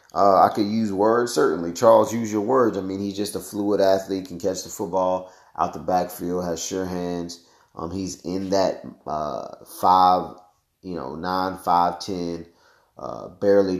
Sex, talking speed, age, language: male, 175 wpm, 30-49, English